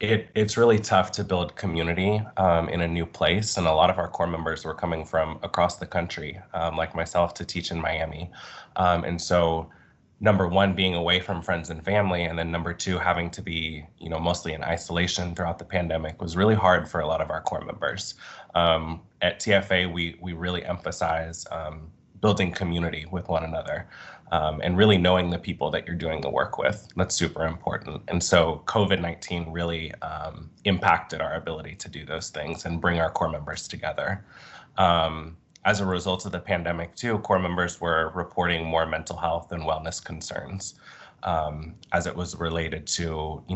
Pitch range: 80-95 Hz